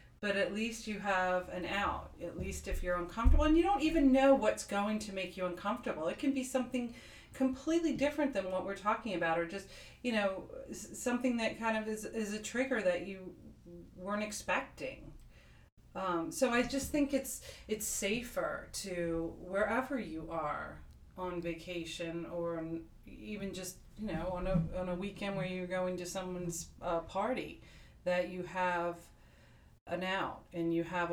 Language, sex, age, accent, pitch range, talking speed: English, female, 40-59, American, 170-215 Hz, 175 wpm